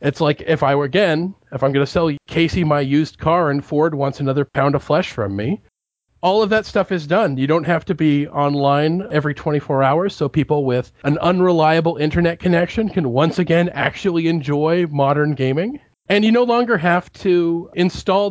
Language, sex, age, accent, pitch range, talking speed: English, male, 40-59, American, 140-175 Hz, 195 wpm